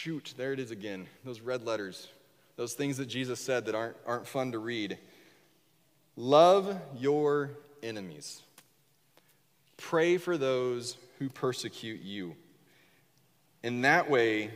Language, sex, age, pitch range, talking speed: English, male, 30-49, 125-170 Hz, 125 wpm